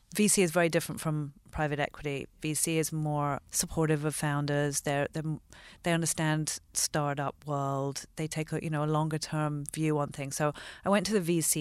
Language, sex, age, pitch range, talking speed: English, female, 40-59, 145-170 Hz, 180 wpm